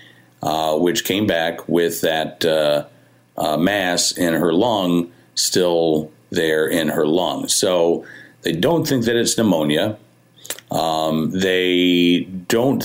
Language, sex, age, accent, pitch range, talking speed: English, male, 50-69, American, 80-95 Hz, 125 wpm